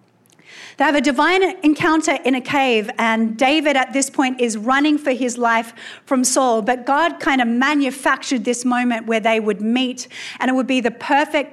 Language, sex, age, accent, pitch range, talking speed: English, female, 40-59, Australian, 225-280 Hz, 195 wpm